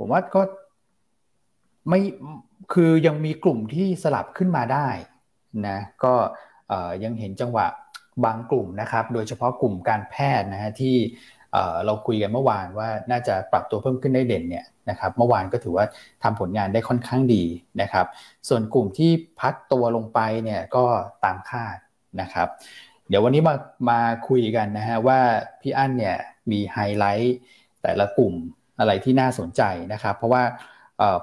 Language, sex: Thai, male